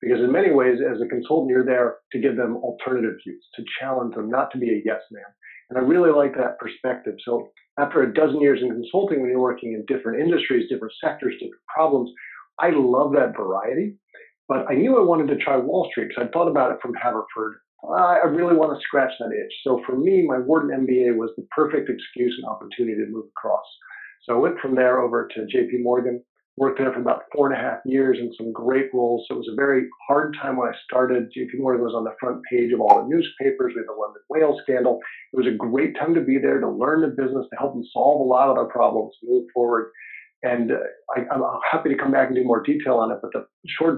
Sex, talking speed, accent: male, 240 wpm, American